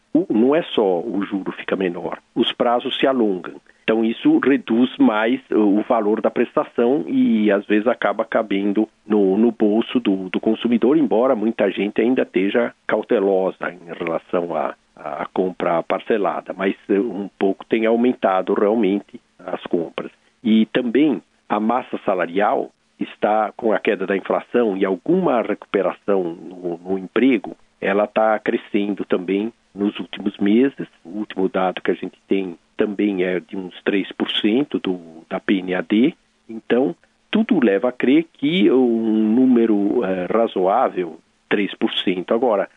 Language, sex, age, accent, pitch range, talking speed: Portuguese, male, 50-69, Brazilian, 95-115 Hz, 140 wpm